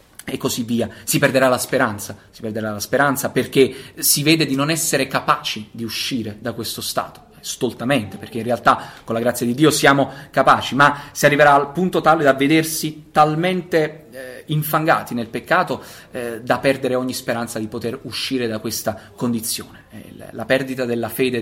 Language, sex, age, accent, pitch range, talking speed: Italian, male, 30-49, native, 120-145 Hz, 180 wpm